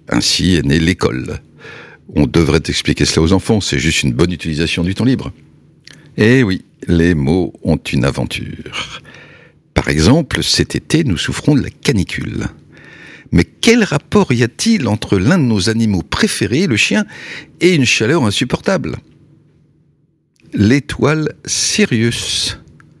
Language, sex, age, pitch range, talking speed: French, male, 60-79, 80-120 Hz, 140 wpm